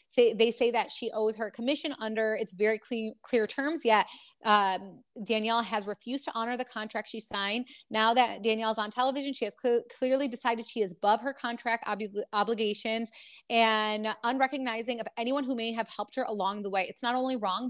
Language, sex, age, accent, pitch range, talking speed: English, female, 20-39, American, 220-275 Hz, 185 wpm